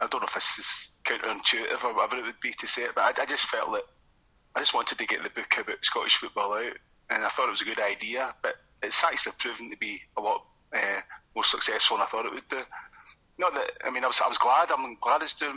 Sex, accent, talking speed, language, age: male, British, 275 wpm, English, 30-49